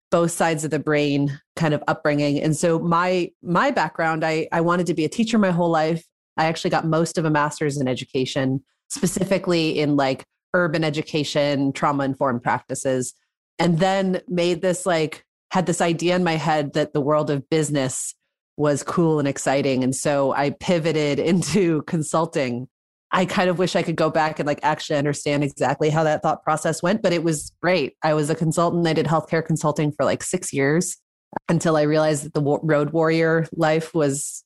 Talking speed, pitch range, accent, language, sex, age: 190 wpm, 150-180 Hz, American, English, female, 30-49